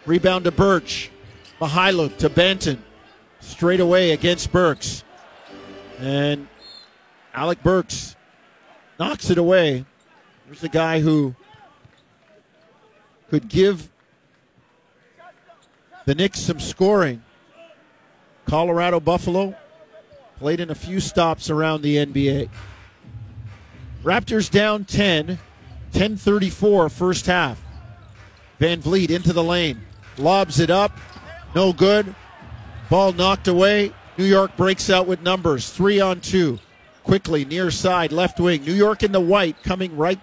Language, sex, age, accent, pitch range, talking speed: English, male, 50-69, American, 150-190 Hz, 115 wpm